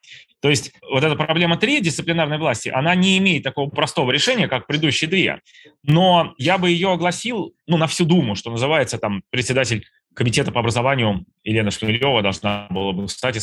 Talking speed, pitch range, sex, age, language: 175 wpm, 120-160 Hz, male, 20-39, Russian